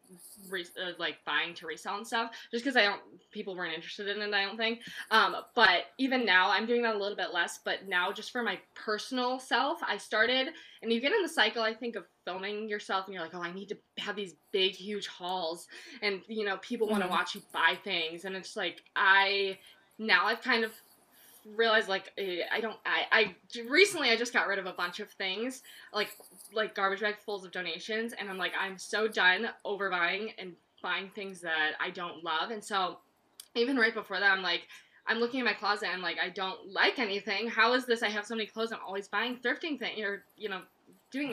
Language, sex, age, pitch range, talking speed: English, female, 20-39, 185-225 Hz, 220 wpm